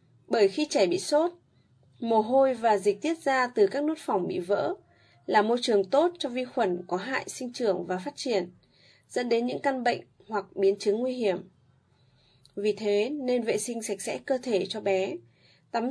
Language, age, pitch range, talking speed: Vietnamese, 20-39, 175-245 Hz, 200 wpm